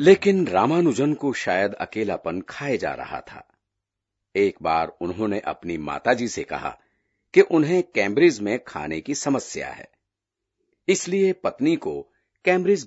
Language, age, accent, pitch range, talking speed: Hindi, 50-69, native, 100-165 Hz, 130 wpm